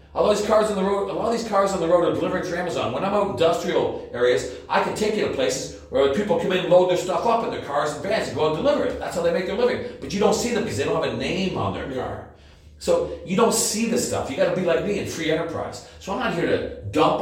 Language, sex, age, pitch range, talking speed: English, male, 40-59, 130-205 Hz, 315 wpm